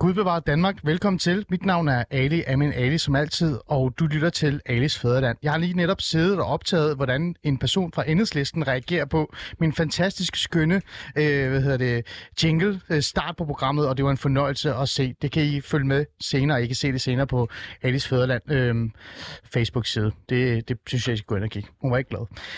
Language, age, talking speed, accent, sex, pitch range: Danish, 30-49, 220 wpm, native, male, 130-175 Hz